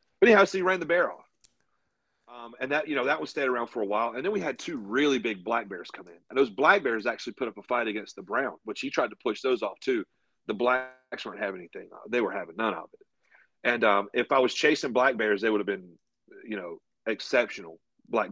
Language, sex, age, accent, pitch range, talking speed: English, male, 40-59, American, 115-175 Hz, 255 wpm